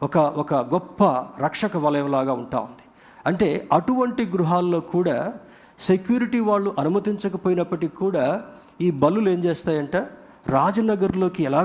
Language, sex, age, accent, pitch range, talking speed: Telugu, male, 50-69, native, 140-195 Hz, 110 wpm